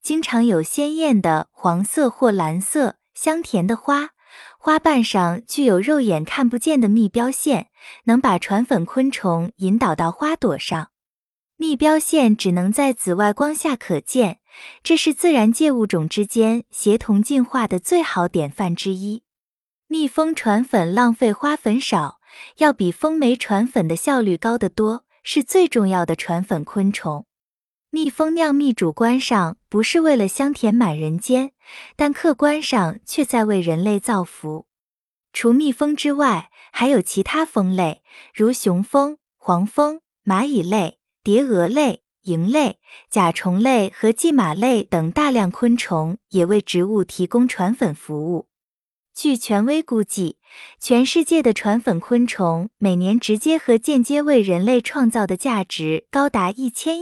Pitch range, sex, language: 190-280 Hz, female, Chinese